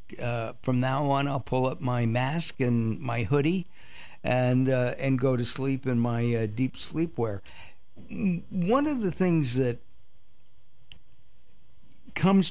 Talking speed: 140 wpm